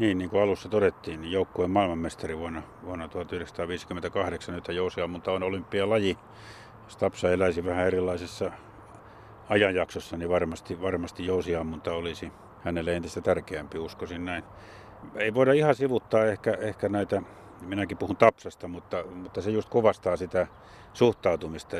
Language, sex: Finnish, male